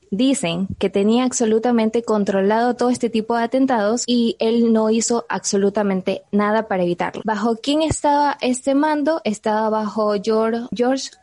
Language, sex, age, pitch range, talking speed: Spanish, female, 20-39, 205-245 Hz, 145 wpm